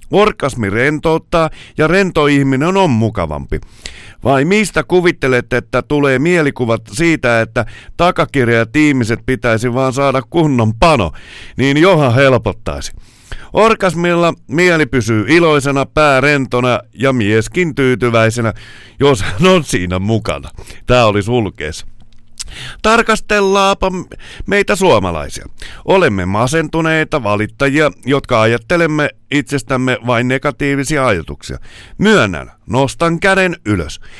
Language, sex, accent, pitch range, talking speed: Finnish, male, native, 110-160 Hz, 100 wpm